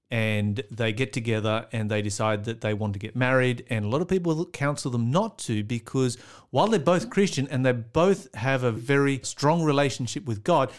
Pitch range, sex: 115-145 Hz, male